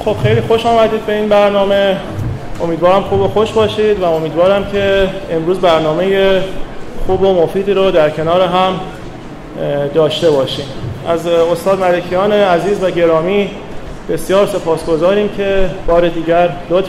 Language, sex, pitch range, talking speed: Persian, male, 155-195 Hz, 135 wpm